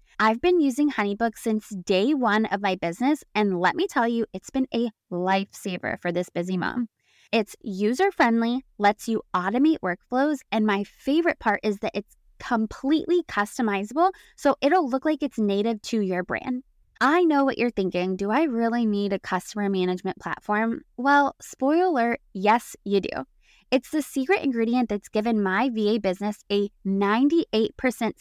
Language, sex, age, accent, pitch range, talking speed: English, female, 20-39, American, 205-275 Hz, 165 wpm